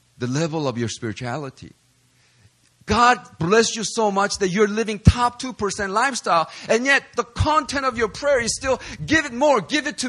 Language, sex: English, male